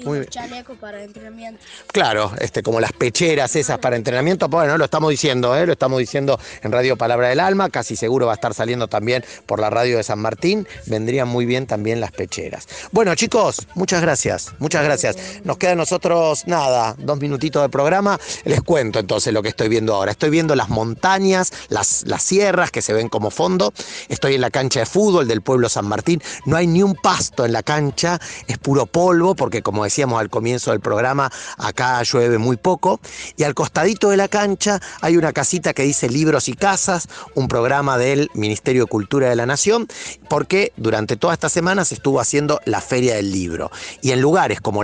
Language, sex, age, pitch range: Spanish, male, 30-49, 120-175 Hz